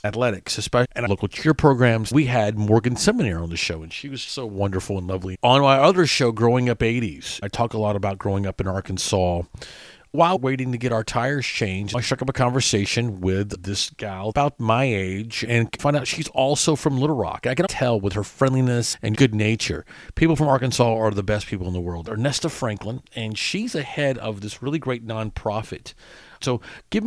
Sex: male